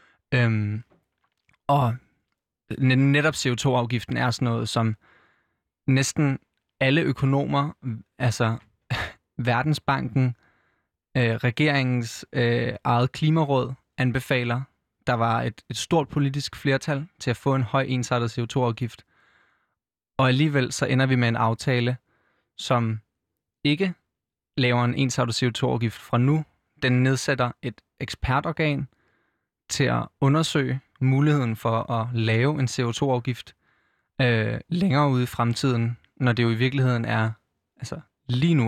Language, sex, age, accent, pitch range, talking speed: Danish, male, 20-39, native, 120-135 Hz, 120 wpm